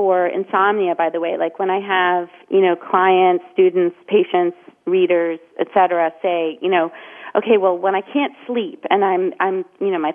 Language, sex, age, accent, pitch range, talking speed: English, female, 30-49, American, 185-310 Hz, 185 wpm